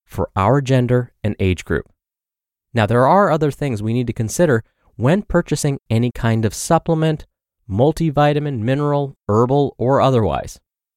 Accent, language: American, English